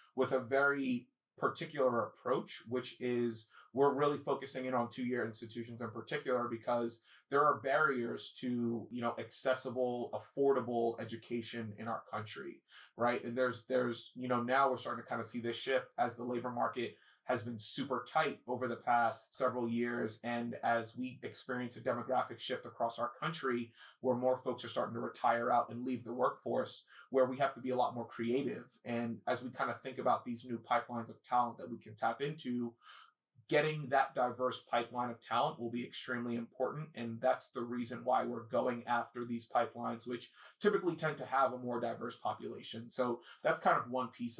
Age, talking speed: 30-49, 190 wpm